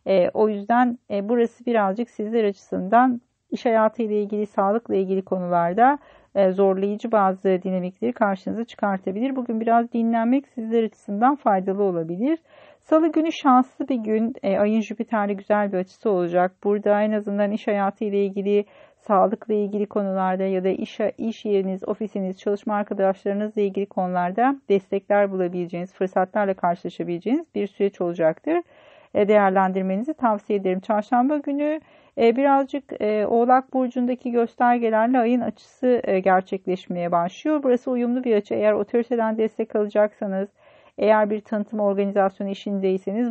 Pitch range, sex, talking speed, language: 200-245 Hz, female, 120 wpm, Turkish